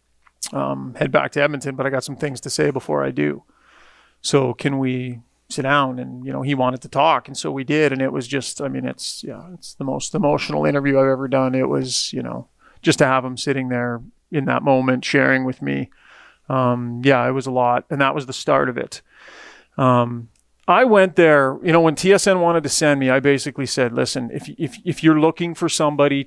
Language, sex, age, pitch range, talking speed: English, male, 40-59, 130-155 Hz, 225 wpm